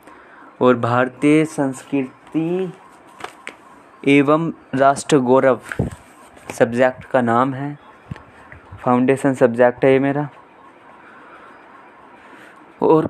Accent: native